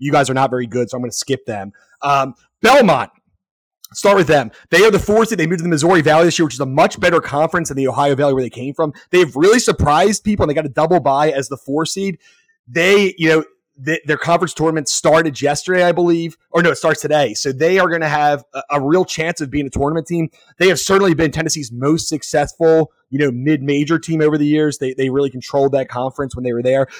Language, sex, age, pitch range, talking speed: English, male, 30-49, 140-175 Hz, 250 wpm